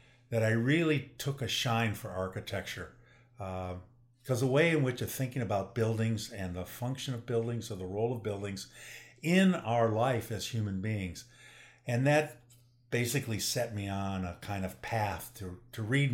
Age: 50-69